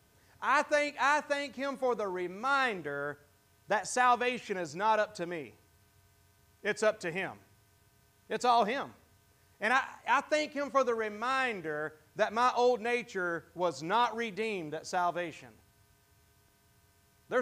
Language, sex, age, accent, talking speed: English, male, 40-59, American, 140 wpm